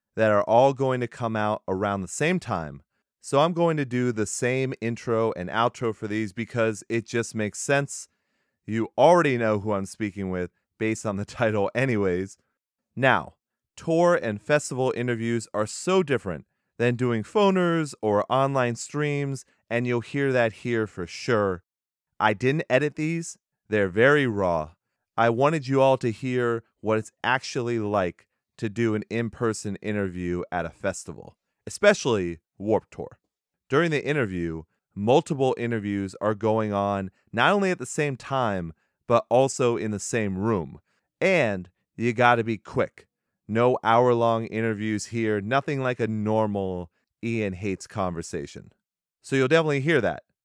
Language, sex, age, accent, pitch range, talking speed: English, male, 30-49, American, 105-130 Hz, 155 wpm